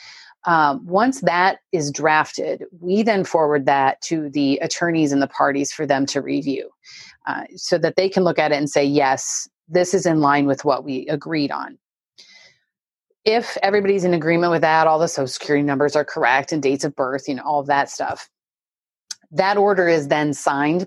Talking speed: 190 wpm